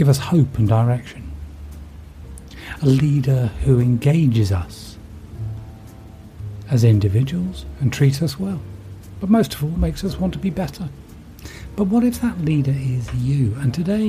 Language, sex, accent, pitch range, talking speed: English, male, British, 105-170 Hz, 150 wpm